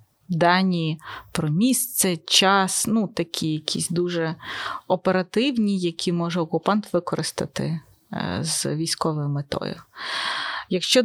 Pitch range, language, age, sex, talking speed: 165-200 Hz, Ukrainian, 30-49, female, 90 wpm